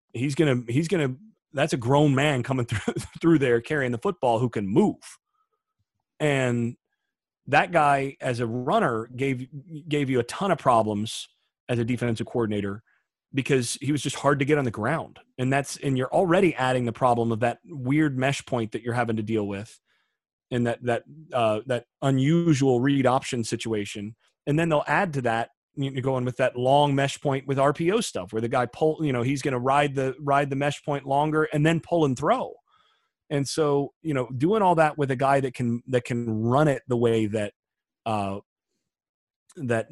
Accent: American